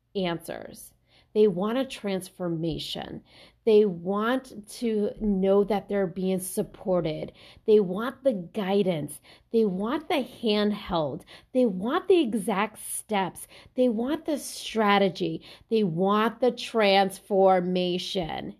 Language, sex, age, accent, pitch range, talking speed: English, female, 30-49, American, 180-235 Hz, 110 wpm